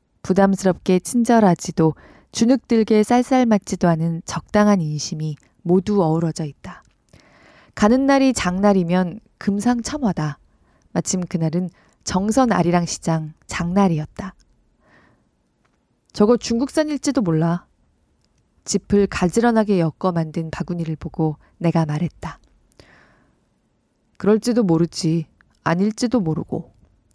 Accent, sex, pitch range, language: native, female, 165-225 Hz, Korean